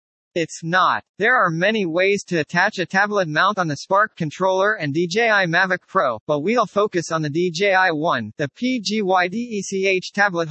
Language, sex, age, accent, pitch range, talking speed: English, male, 40-59, American, 155-205 Hz, 165 wpm